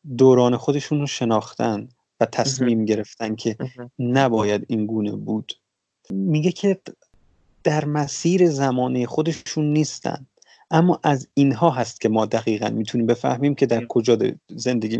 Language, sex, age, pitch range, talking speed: Persian, male, 30-49, 120-160 Hz, 130 wpm